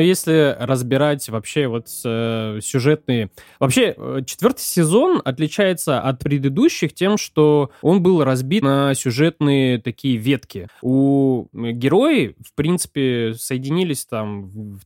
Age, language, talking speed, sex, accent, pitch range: 20-39, Russian, 110 wpm, male, native, 115-155 Hz